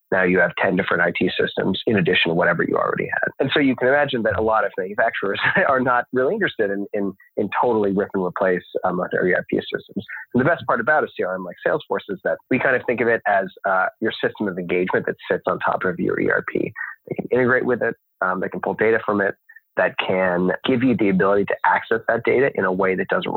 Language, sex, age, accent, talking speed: English, male, 30-49, American, 245 wpm